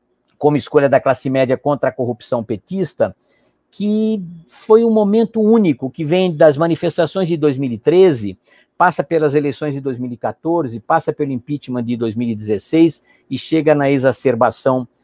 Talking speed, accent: 135 wpm, Brazilian